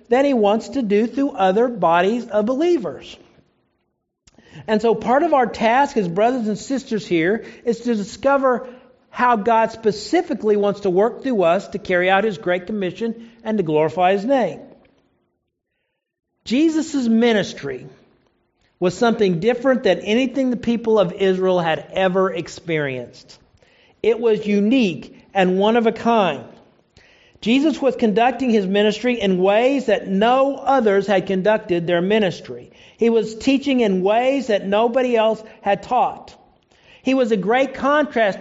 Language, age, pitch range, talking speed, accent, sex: English, 50-69, 200-250 Hz, 145 wpm, American, male